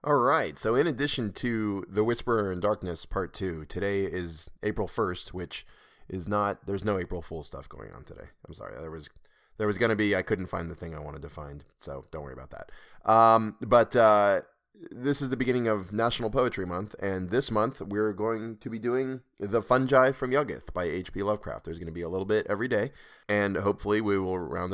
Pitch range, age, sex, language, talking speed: 85-110 Hz, 20-39, male, English, 215 wpm